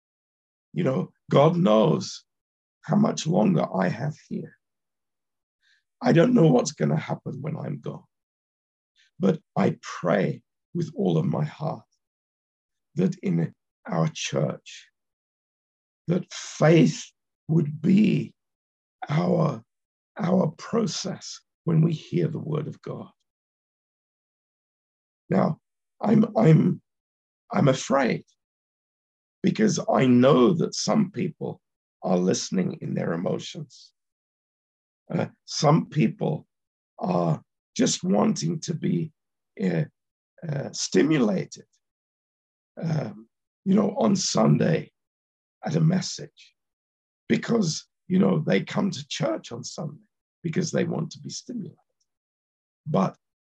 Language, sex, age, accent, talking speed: Romanian, male, 50-69, British, 110 wpm